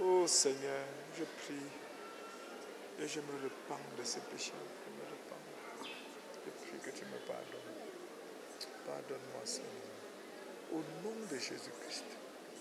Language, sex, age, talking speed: English, male, 60-79, 125 wpm